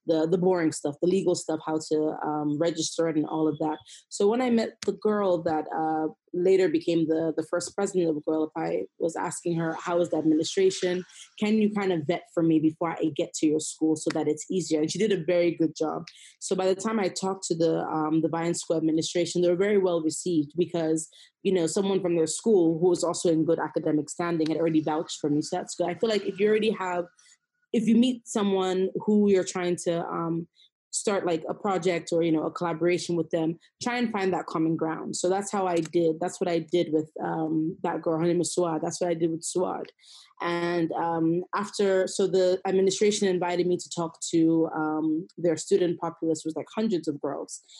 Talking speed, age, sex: 230 wpm, 20-39, female